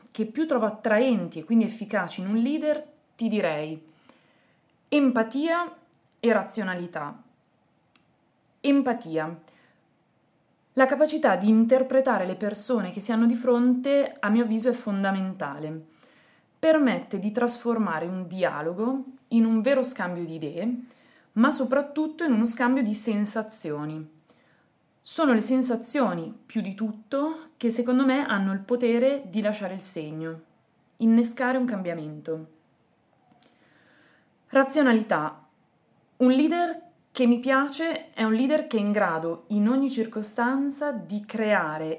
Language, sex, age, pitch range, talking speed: Italian, female, 20-39, 200-265 Hz, 125 wpm